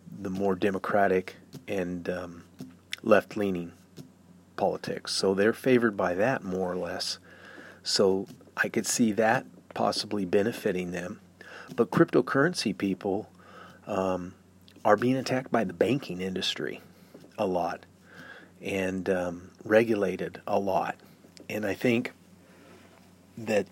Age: 40-59